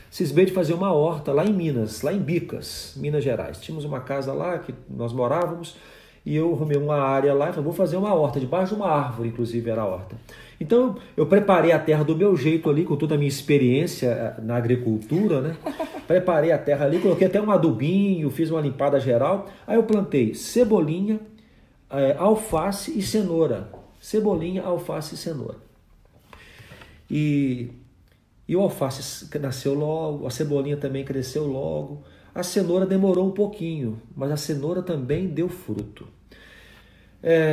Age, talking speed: 40-59, 165 wpm